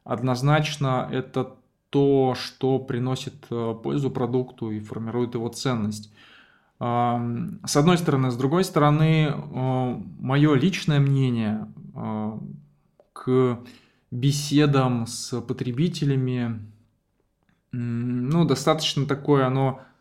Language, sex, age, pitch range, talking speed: Russian, male, 20-39, 120-140 Hz, 85 wpm